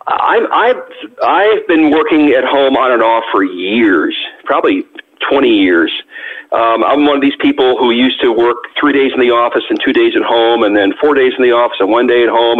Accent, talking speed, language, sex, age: American, 225 wpm, English, male, 50-69